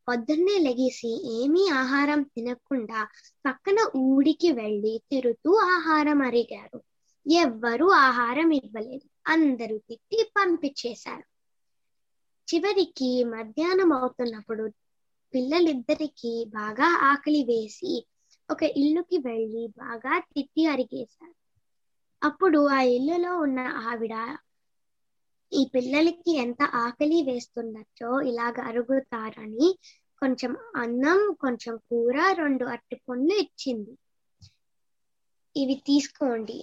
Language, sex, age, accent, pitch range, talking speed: Telugu, female, 20-39, native, 240-325 Hz, 85 wpm